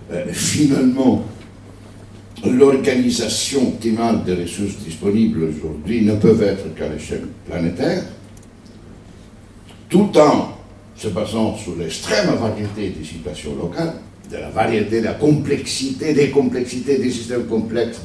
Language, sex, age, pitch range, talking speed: French, male, 60-79, 90-110 Hz, 115 wpm